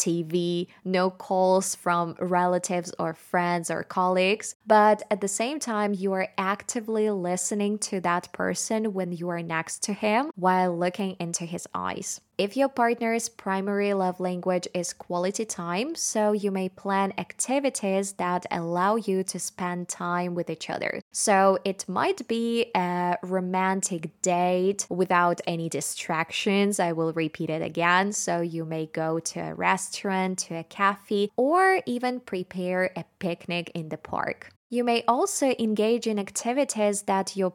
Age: 20-39